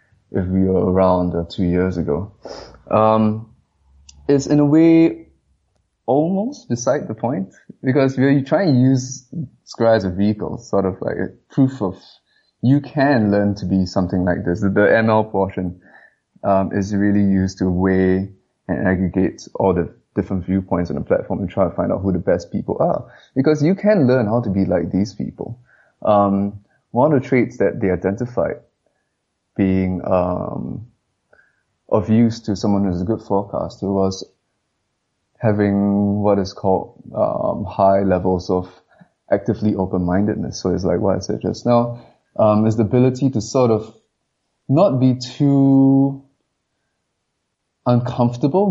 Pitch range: 95-120 Hz